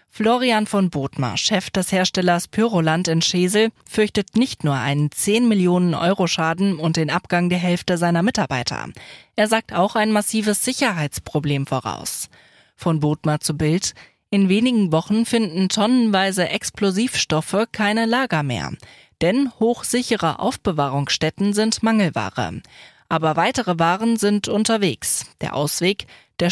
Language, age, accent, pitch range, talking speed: German, 20-39, German, 160-215 Hz, 120 wpm